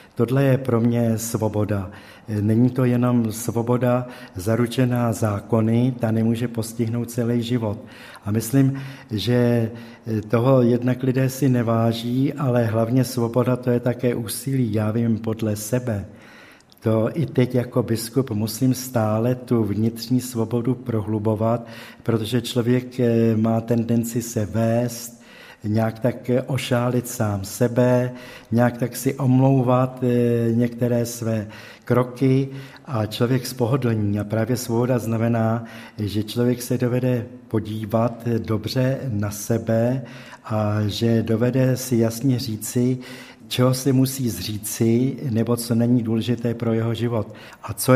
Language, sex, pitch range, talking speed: Czech, male, 115-125 Hz, 125 wpm